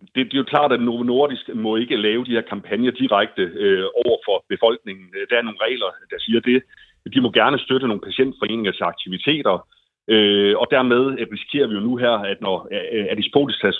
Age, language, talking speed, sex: 30-49, Danish, 195 wpm, male